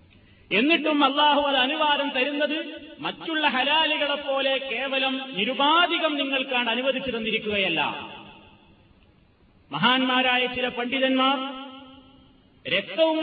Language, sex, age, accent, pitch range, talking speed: Malayalam, male, 30-49, native, 215-275 Hz, 75 wpm